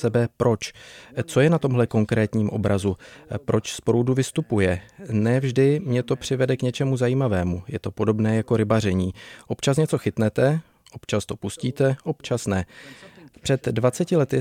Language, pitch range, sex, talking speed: Czech, 110-130 Hz, male, 145 wpm